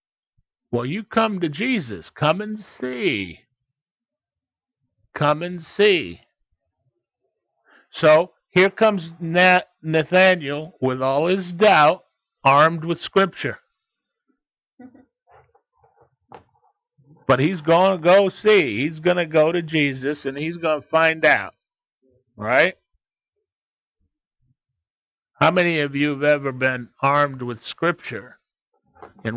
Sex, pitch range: male, 135-185 Hz